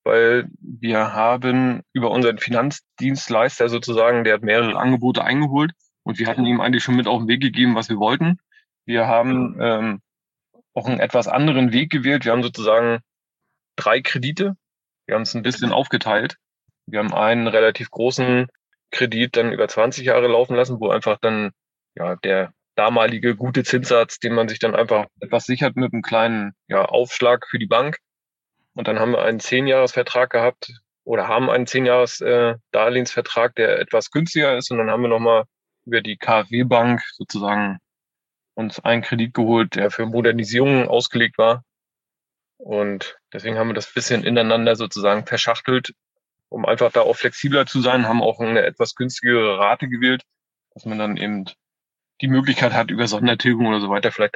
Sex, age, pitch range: male, 30-49, 115-125 Hz